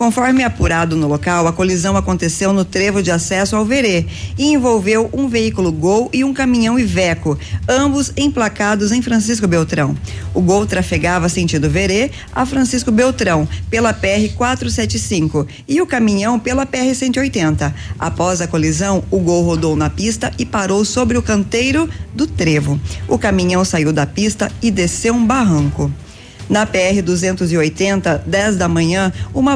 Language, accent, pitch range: Portuguese, Brazilian, 165-225 Hz